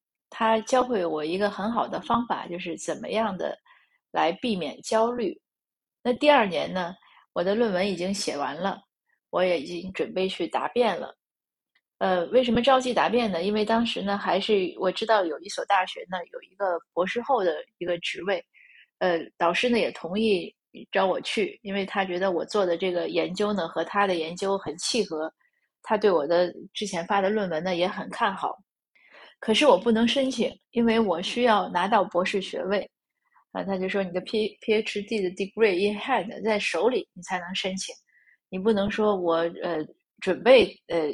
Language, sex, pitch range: Chinese, female, 180-230 Hz